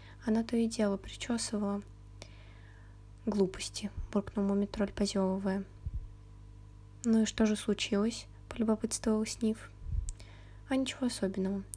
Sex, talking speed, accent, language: female, 95 wpm, native, Russian